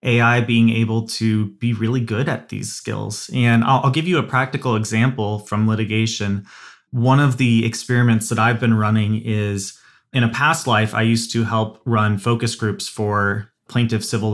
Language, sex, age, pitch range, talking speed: English, male, 20-39, 110-125 Hz, 180 wpm